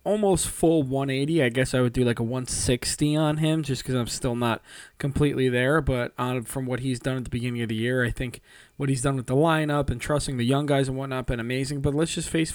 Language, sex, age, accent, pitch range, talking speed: English, male, 20-39, American, 120-145 Hz, 255 wpm